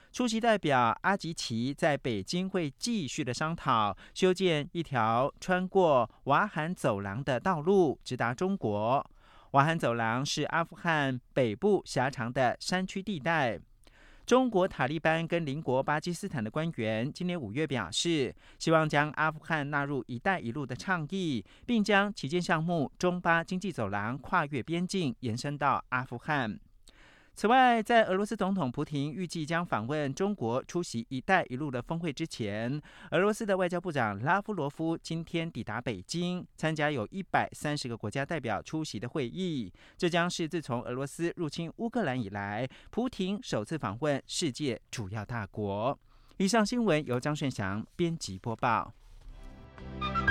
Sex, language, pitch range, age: male, Russian, 125-180 Hz, 50-69